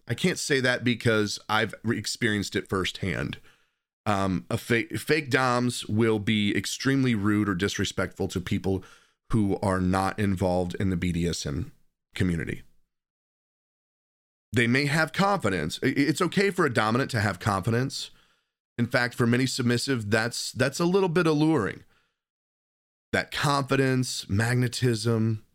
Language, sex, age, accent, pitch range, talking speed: English, male, 30-49, American, 100-125 Hz, 130 wpm